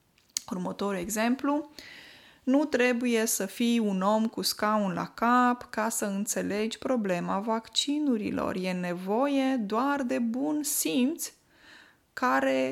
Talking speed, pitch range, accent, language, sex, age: 115 wpm, 200-255 Hz, native, Romanian, female, 20-39